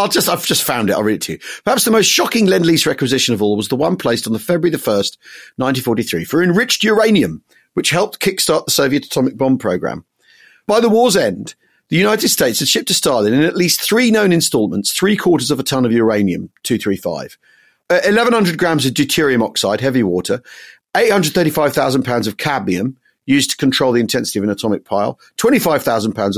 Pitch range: 125-180 Hz